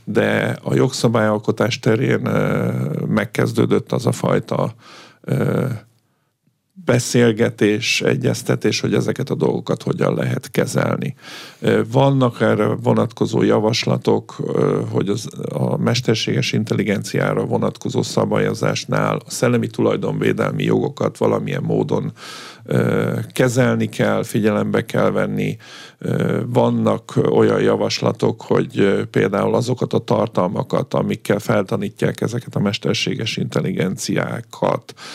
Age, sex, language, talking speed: 50-69, male, Hungarian, 90 wpm